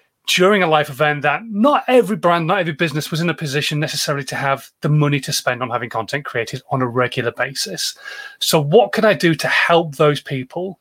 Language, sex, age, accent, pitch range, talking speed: English, male, 30-49, British, 145-185 Hz, 215 wpm